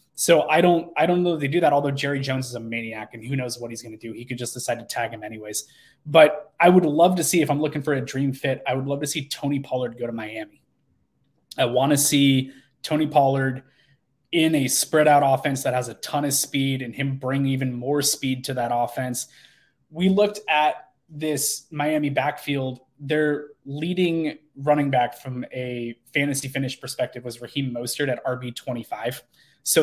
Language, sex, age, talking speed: English, male, 20-39, 205 wpm